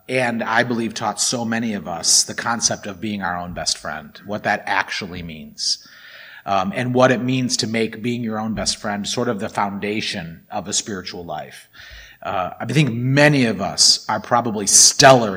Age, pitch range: 30-49, 100-125 Hz